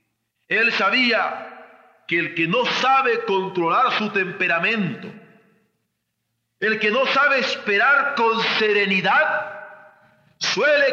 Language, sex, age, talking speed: Spanish, male, 50-69, 100 wpm